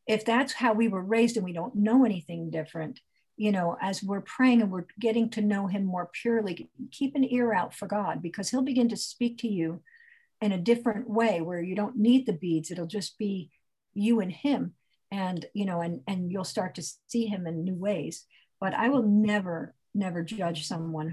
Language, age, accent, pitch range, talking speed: English, 50-69, American, 165-210 Hz, 210 wpm